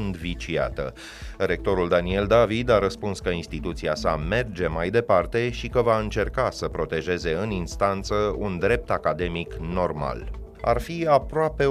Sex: male